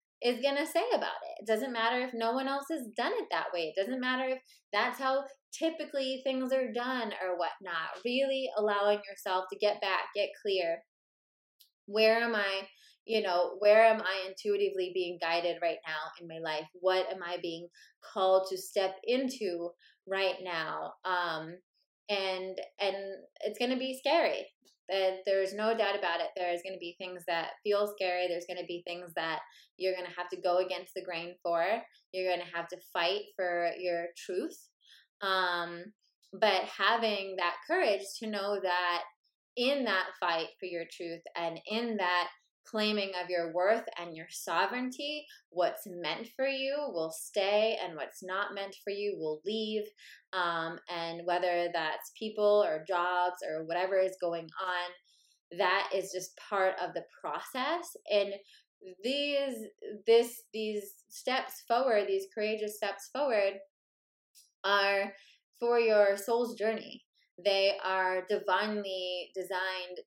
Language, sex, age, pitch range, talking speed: English, female, 20-39, 180-220 Hz, 160 wpm